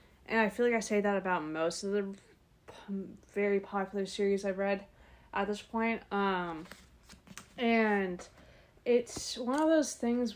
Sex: female